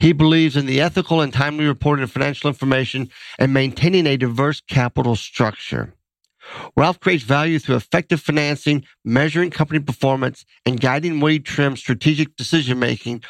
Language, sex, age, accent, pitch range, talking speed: English, male, 50-69, American, 125-155 Hz, 145 wpm